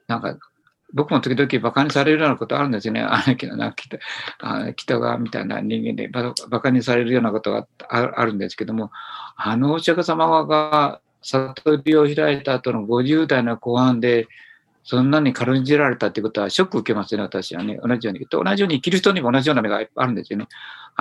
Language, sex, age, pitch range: Japanese, male, 50-69, 115-150 Hz